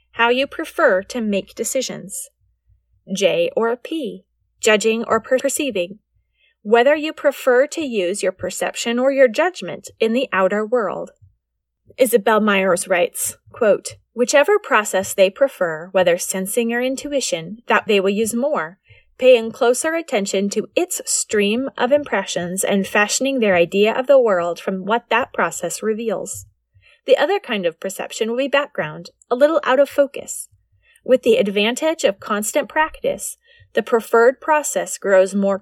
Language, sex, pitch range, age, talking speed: English, female, 195-280 Hz, 30-49, 145 wpm